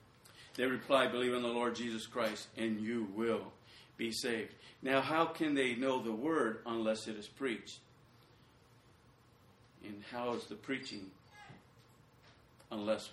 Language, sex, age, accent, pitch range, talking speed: English, male, 50-69, American, 115-130 Hz, 135 wpm